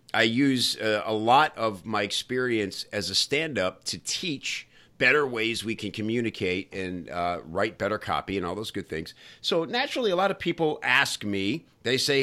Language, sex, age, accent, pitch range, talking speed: English, male, 50-69, American, 105-130 Hz, 185 wpm